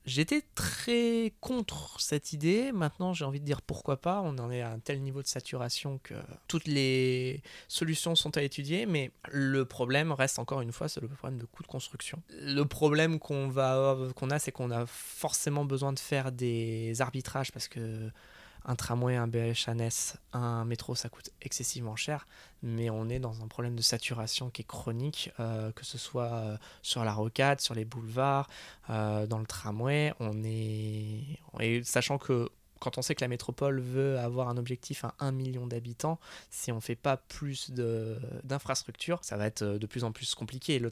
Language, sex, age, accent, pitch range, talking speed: French, male, 20-39, French, 115-140 Hz, 190 wpm